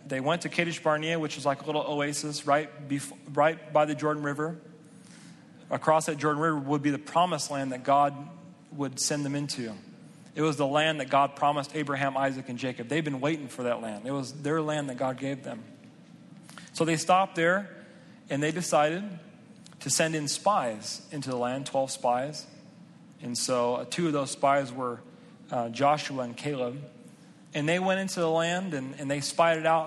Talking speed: 195 wpm